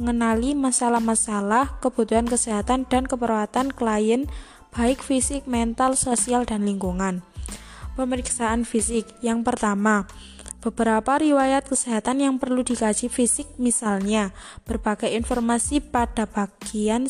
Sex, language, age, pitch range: female, Indonesian, 20-39, 215-260 Hz